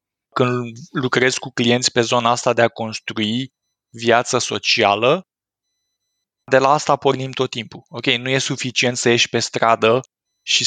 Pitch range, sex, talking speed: 110-130 Hz, male, 150 wpm